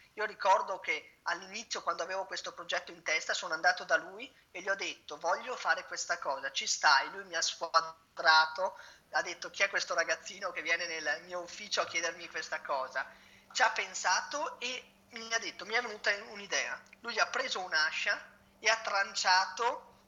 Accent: native